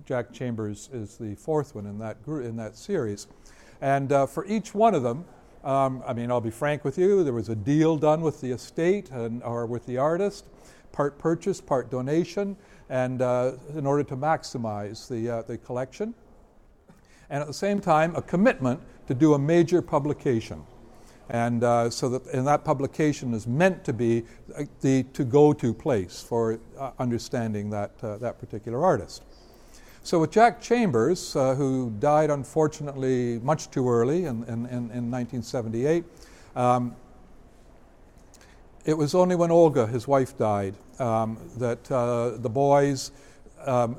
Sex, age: male, 60-79